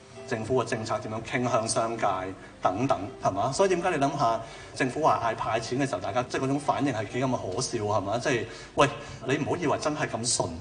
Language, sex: Chinese, male